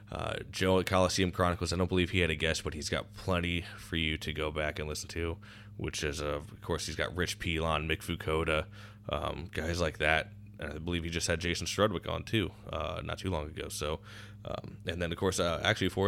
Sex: male